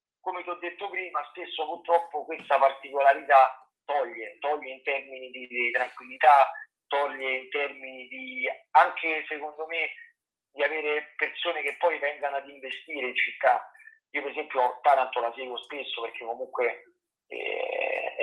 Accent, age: native, 40-59